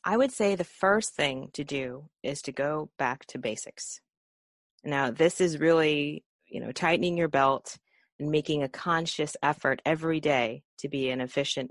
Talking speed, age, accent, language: 175 wpm, 30-49, American, English